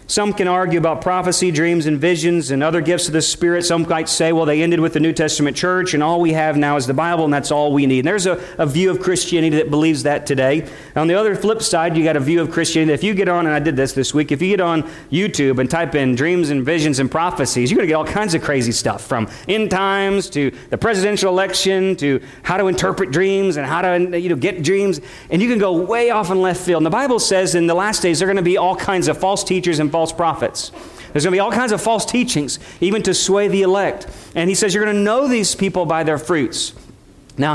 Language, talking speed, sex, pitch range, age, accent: English, 270 wpm, male, 150-190 Hz, 40-59, American